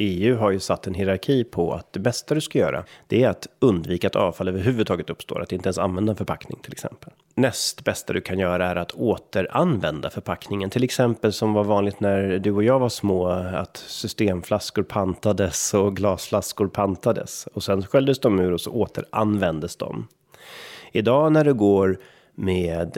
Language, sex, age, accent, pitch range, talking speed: Swedish, male, 30-49, native, 90-115 Hz, 180 wpm